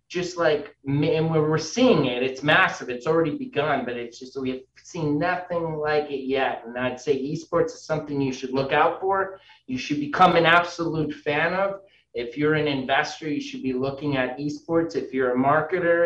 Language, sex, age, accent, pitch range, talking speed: English, male, 30-49, American, 130-170 Hz, 200 wpm